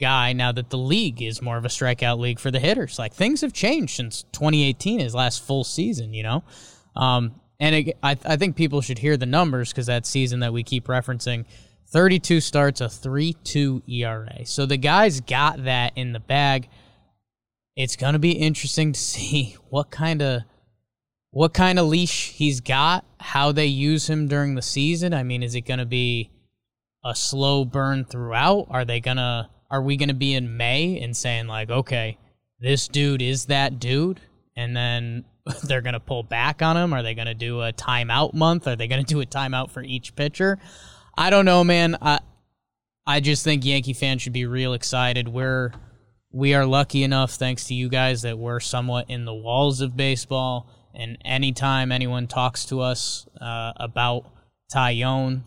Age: 10-29